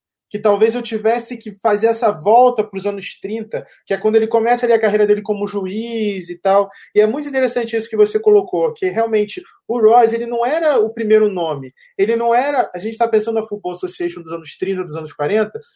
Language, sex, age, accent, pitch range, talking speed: Portuguese, male, 20-39, Brazilian, 190-235 Hz, 225 wpm